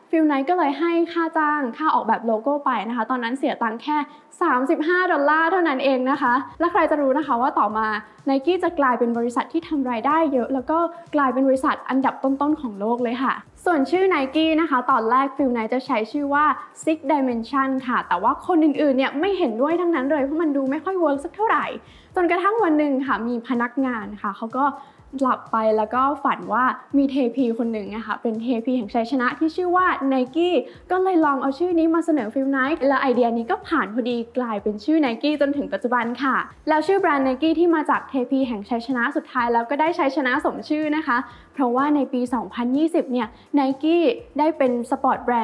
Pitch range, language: 250-315 Hz, English